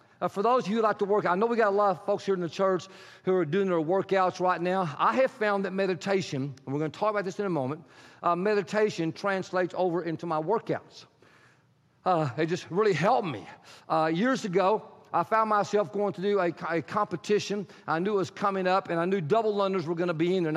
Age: 50-69